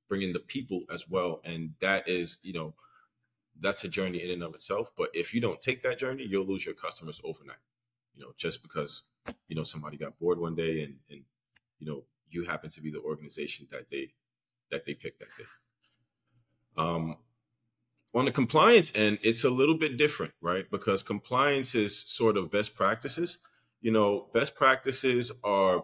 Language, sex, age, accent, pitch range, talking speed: English, male, 30-49, American, 85-115 Hz, 185 wpm